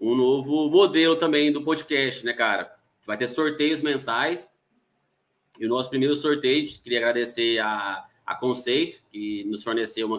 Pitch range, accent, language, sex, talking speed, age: 120-160 Hz, Brazilian, Portuguese, male, 165 wpm, 20-39